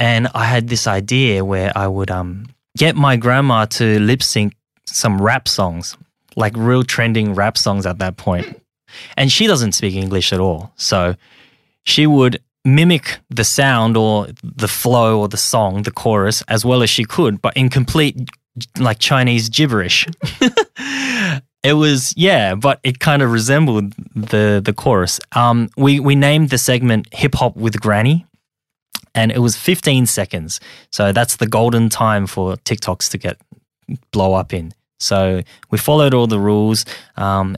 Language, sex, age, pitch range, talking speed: English, male, 20-39, 105-135 Hz, 165 wpm